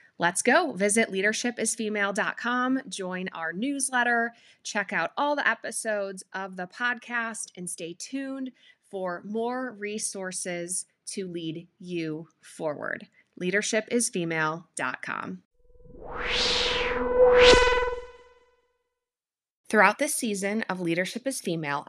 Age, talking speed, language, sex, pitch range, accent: 20-39, 90 wpm, English, female, 165-230 Hz, American